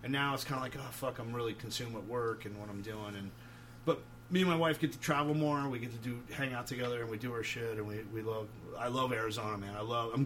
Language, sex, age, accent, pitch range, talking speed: English, male, 30-49, American, 110-130 Hz, 290 wpm